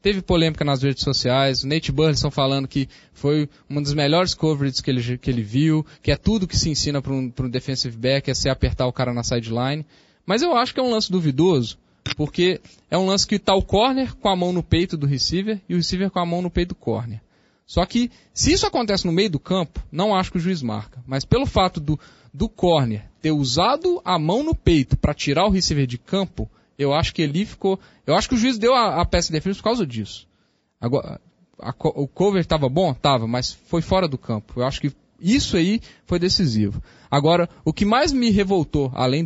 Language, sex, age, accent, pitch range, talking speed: Portuguese, male, 10-29, Brazilian, 135-185 Hz, 230 wpm